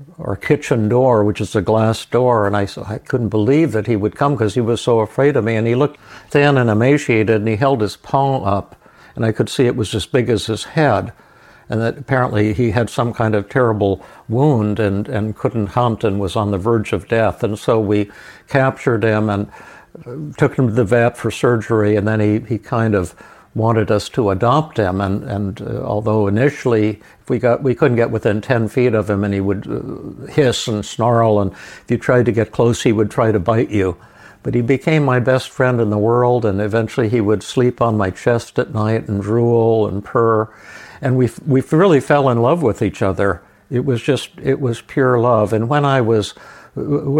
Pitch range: 105-130 Hz